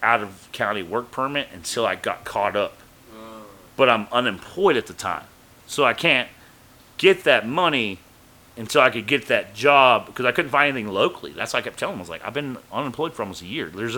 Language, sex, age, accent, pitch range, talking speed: English, male, 30-49, American, 95-125 Hz, 200 wpm